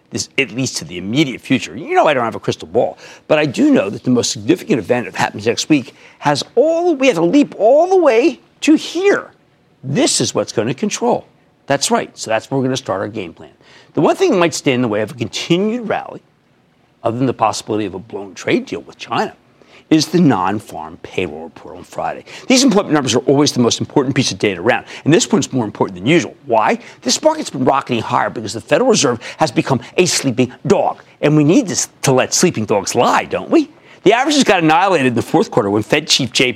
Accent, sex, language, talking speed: American, male, English, 235 wpm